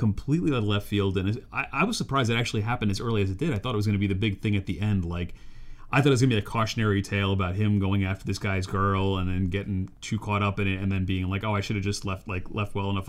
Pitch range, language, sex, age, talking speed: 100-120 Hz, English, male, 30-49, 310 wpm